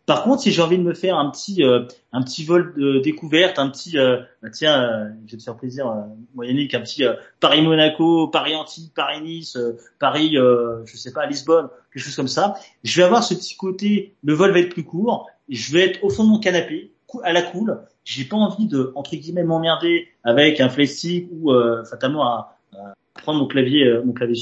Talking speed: 225 wpm